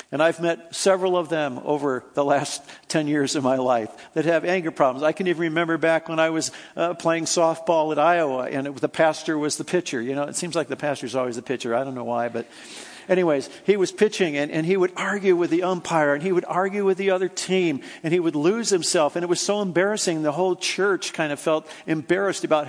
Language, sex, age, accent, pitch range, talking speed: English, male, 50-69, American, 145-185 Hz, 245 wpm